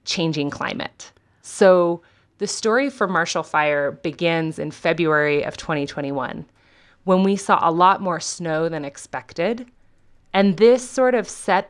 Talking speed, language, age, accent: 140 wpm, English, 30-49, American